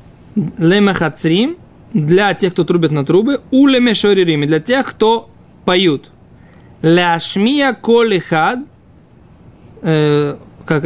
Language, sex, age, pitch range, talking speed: Russian, male, 20-39, 165-225 Hz, 85 wpm